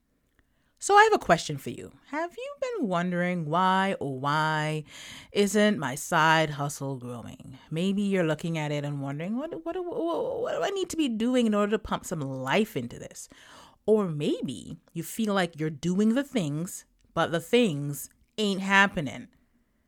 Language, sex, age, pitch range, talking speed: English, female, 30-49, 145-215 Hz, 175 wpm